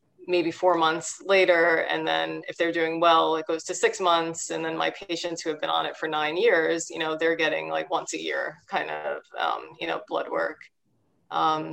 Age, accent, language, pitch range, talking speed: 30-49, American, English, 150-170 Hz, 220 wpm